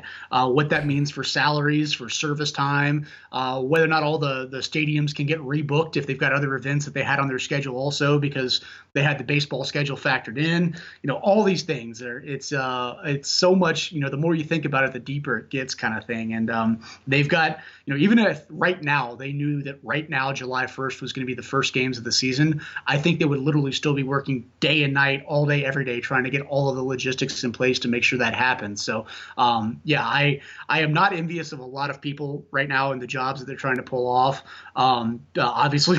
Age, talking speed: 30-49, 250 wpm